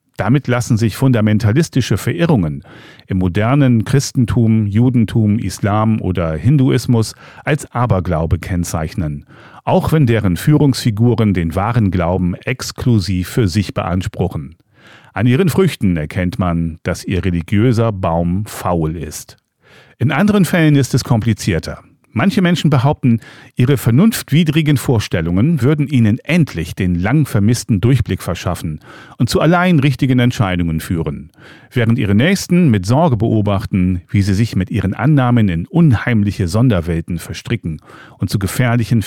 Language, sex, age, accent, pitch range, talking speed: German, male, 40-59, German, 95-135 Hz, 125 wpm